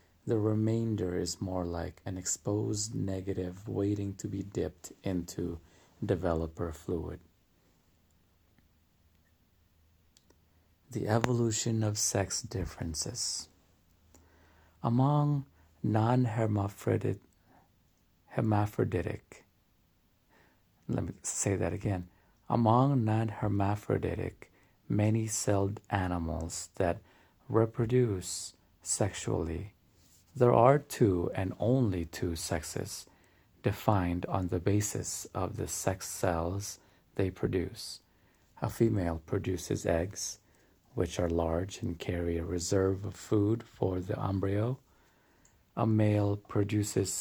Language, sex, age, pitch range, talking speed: English, male, 50-69, 90-110 Hz, 95 wpm